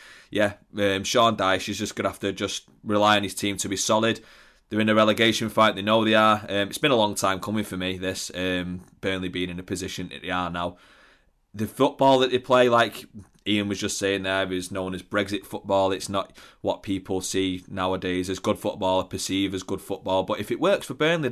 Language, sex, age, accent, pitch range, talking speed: English, male, 20-39, British, 95-115 Hz, 235 wpm